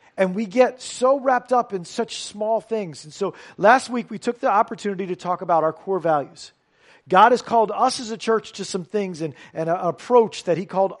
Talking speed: 220 wpm